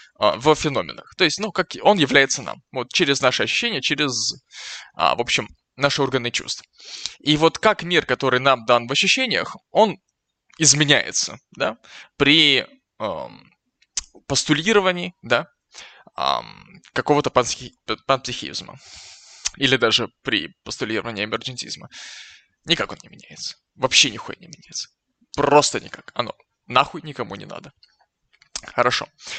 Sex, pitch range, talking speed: male, 130-160 Hz, 120 wpm